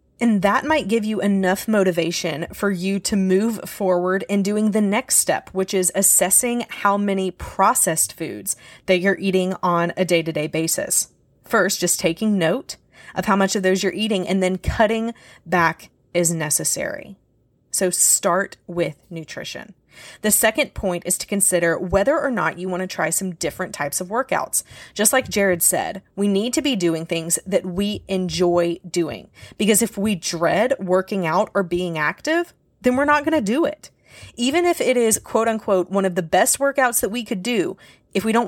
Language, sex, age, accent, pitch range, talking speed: English, female, 30-49, American, 175-220 Hz, 185 wpm